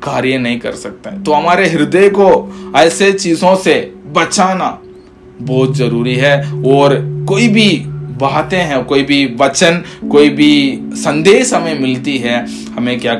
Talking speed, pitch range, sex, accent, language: 145 wpm, 125-170 Hz, male, native, Hindi